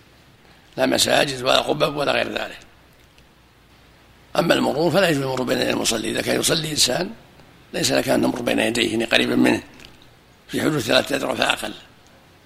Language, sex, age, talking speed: Arabic, male, 60-79, 155 wpm